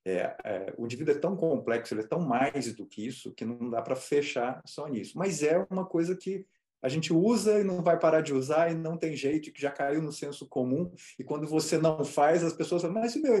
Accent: Brazilian